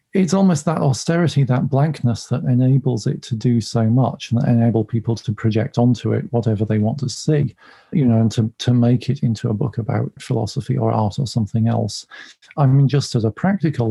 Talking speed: 205 wpm